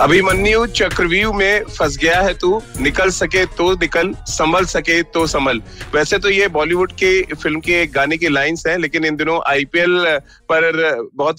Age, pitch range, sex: 30-49, 150-175 Hz, male